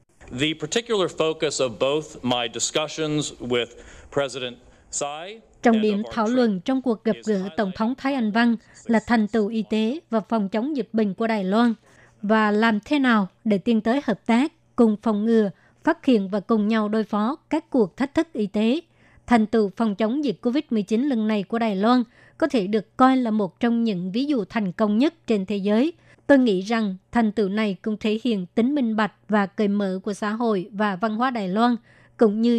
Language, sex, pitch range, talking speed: Vietnamese, male, 205-235 Hz, 195 wpm